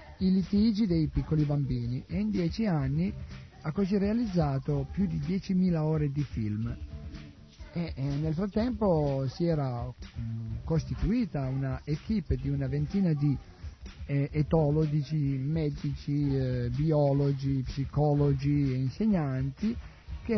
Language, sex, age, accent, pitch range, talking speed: Italian, male, 50-69, native, 120-160 Hz, 120 wpm